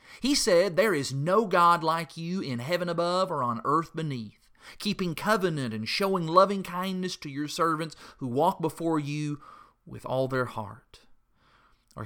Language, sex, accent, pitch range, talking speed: English, male, American, 125-175 Hz, 165 wpm